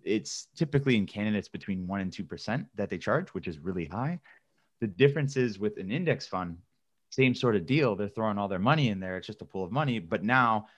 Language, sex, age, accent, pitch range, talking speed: English, male, 20-39, American, 95-120 Hz, 230 wpm